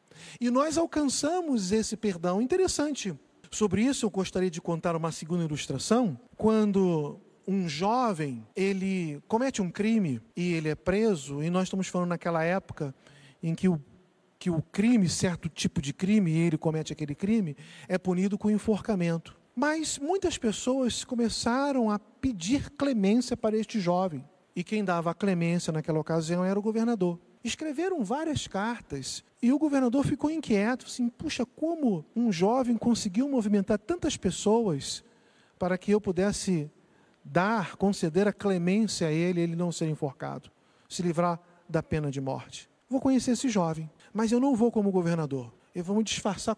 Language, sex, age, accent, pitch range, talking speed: Portuguese, male, 40-59, Brazilian, 170-235 Hz, 155 wpm